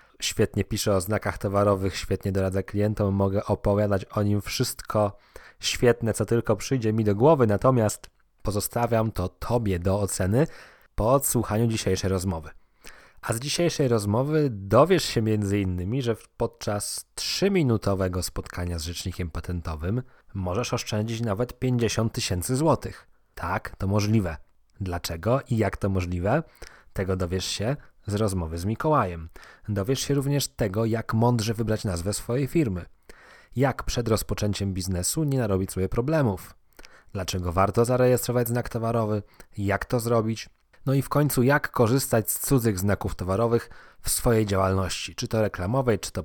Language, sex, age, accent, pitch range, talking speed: Polish, male, 20-39, native, 95-120 Hz, 140 wpm